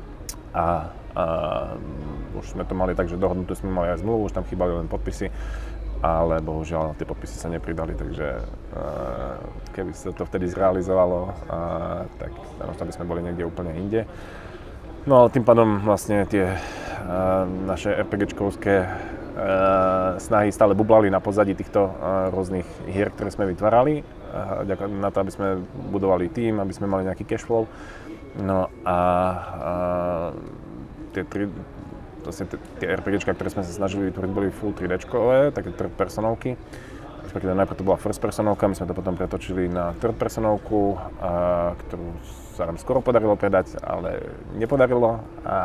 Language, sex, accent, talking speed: Czech, male, native, 155 wpm